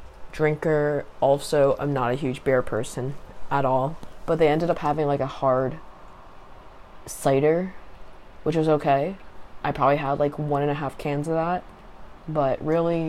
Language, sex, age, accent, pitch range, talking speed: English, female, 20-39, American, 140-160 Hz, 160 wpm